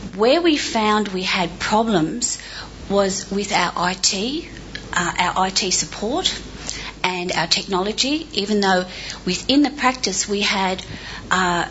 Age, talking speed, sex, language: 40-59, 130 wpm, female, English